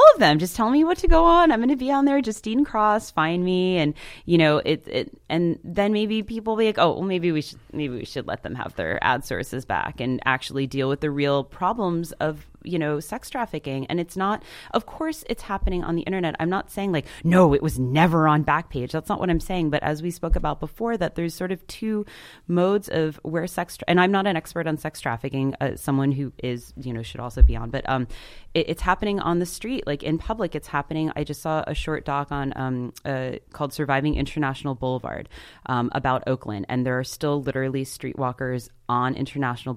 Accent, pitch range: American, 125-175 Hz